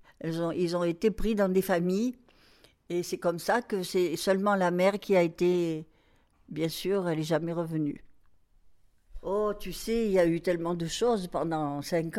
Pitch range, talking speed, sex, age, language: 165-205 Hz, 190 wpm, female, 60-79, French